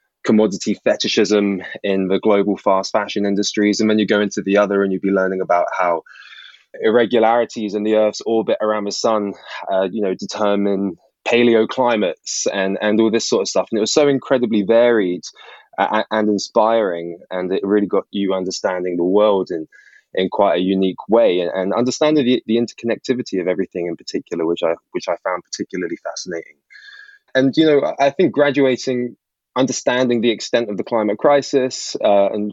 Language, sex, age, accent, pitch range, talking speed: English, male, 20-39, British, 100-120 Hz, 175 wpm